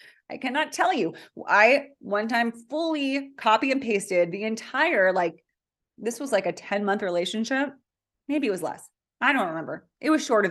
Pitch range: 190-250 Hz